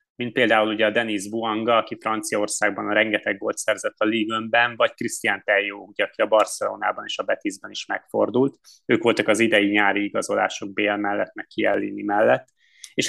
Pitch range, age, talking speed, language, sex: 105-125 Hz, 20-39, 170 wpm, Hungarian, male